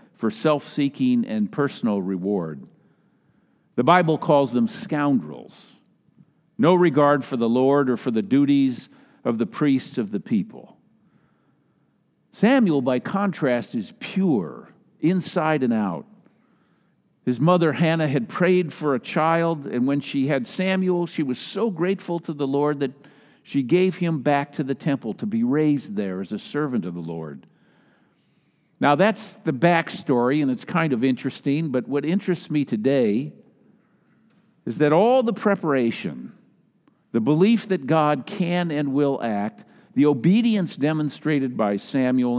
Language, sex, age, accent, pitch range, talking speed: English, male, 50-69, American, 135-185 Hz, 145 wpm